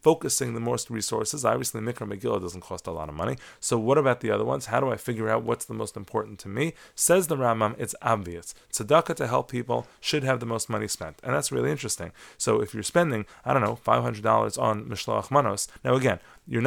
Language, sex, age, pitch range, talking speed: English, male, 30-49, 105-130 Hz, 225 wpm